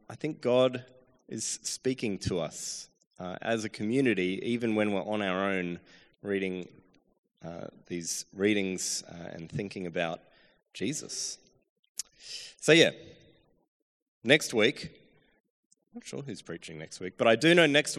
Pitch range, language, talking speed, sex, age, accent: 95-140 Hz, English, 140 wpm, male, 20-39, Australian